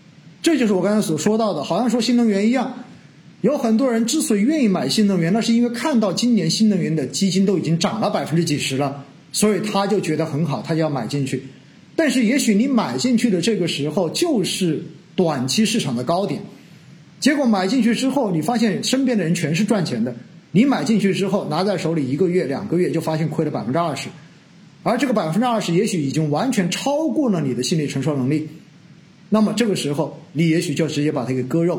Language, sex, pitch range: Chinese, male, 155-215 Hz